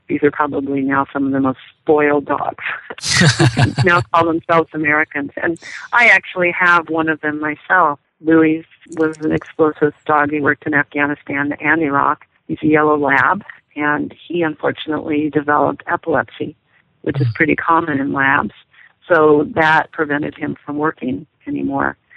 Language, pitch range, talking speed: English, 145-165 Hz, 150 wpm